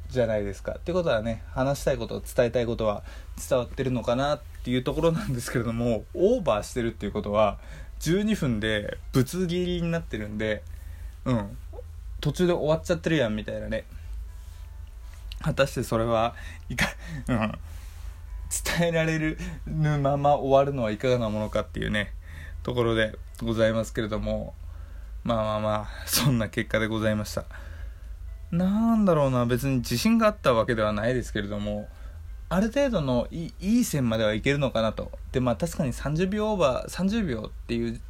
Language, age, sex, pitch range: Japanese, 20-39, male, 90-135 Hz